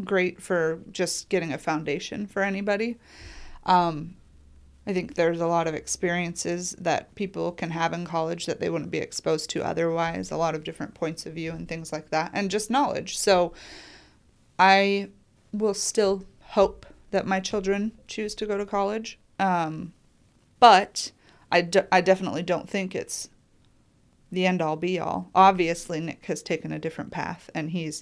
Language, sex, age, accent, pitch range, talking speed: English, female, 30-49, American, 160-190 Hz, 165 wpm